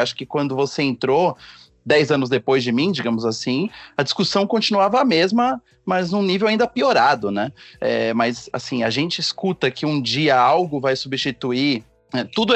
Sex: male